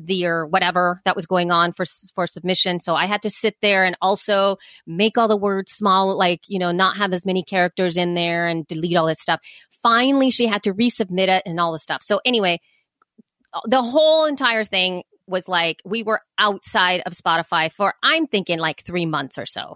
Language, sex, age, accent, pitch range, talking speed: English, female, 30-49, American, 180-220 Hz, 210 wpm